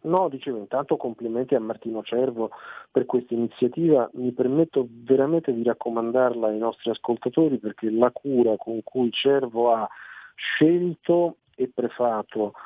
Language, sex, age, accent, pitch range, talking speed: Italian, male, 50-69, native, 115-140 Hz, 135 wpm